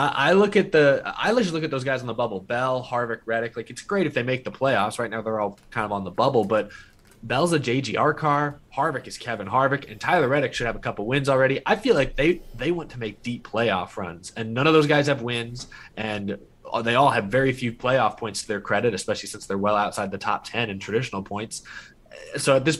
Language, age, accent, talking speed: English, 20-39, American, 245 wpm